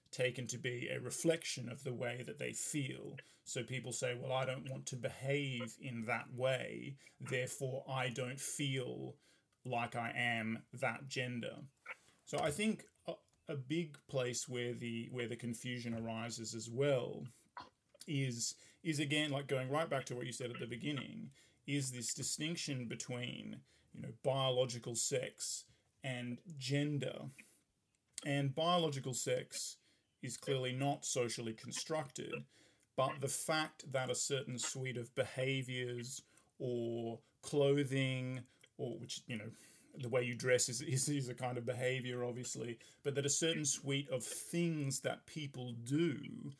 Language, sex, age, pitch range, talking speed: English, male, 30-49, 120-140 Hz, 150 wpm